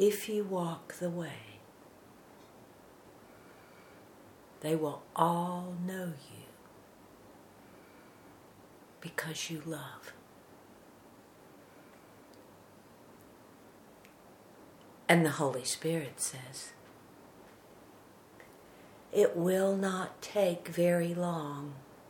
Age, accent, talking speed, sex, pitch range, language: 60-79, American, 65 wpm, female, 160-190 Hz, English